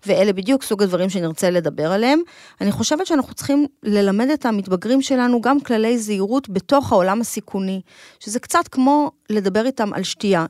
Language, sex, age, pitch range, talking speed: Hebrew, female, 30-49, 190-260 Hz, 160 wpm